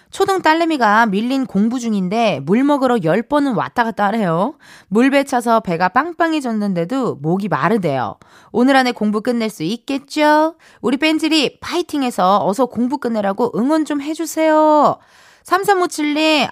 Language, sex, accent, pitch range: Korean, female, native, 190-280 Hz